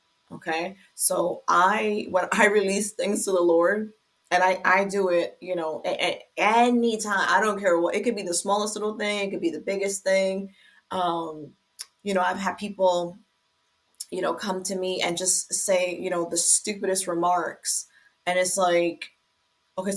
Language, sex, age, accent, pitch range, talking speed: English, female, 20-39, American, 170-200 Hz, 180 wpm